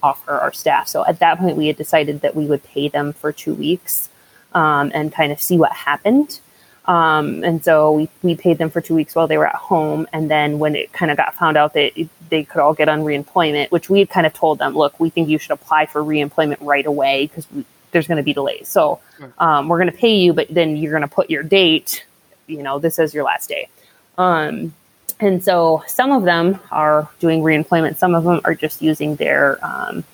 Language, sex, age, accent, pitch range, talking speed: English, female, 20-39, American, 150-170 Hz, 235 wpm